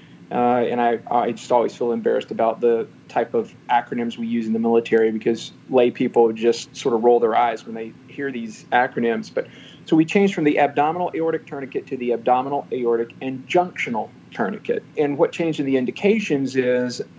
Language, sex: English, male